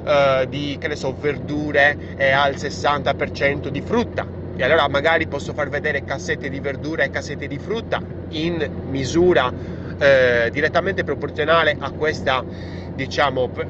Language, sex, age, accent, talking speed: Italian, male, 30-49, native, 135 wpm